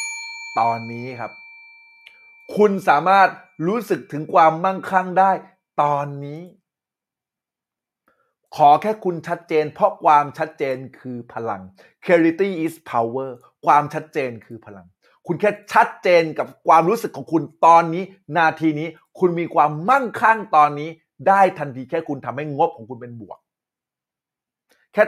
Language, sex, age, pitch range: Thai, male, 20-39, 140-185 Hz